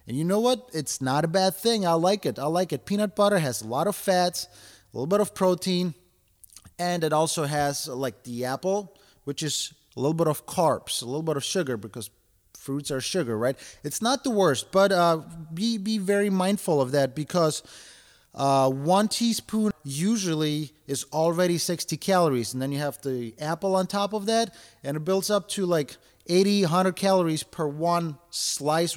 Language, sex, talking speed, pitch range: English, male, 195 wpm, 145-195 Hz